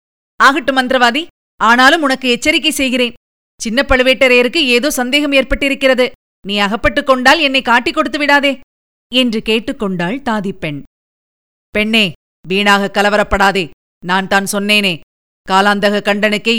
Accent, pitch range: native, 195-270 Hz